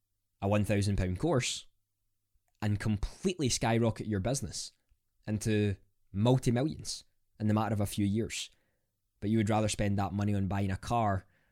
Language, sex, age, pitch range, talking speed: English, male, 10-29, 100-120 Hz, 145 wpm